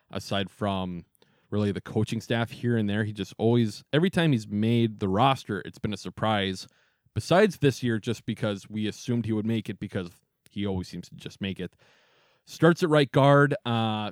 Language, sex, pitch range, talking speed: English, male, 105-130 Hz, 195 wpm